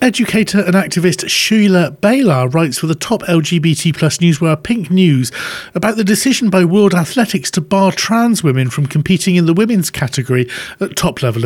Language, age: English, 40-59